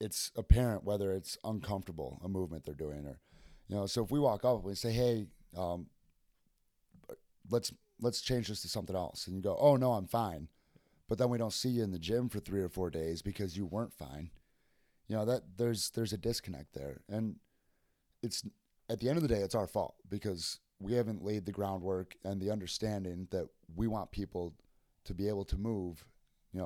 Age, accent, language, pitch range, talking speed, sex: 30-49, American, English, 90-110 Hz, 205 wpm, male